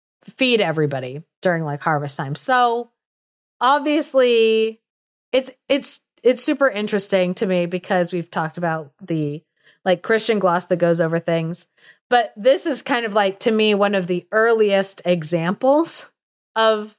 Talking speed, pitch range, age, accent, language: 145 wpm, 180-245 Hz, 30-49, American, English